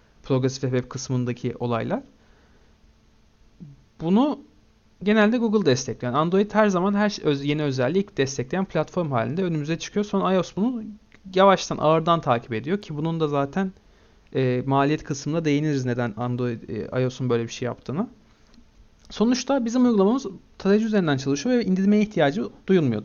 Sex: male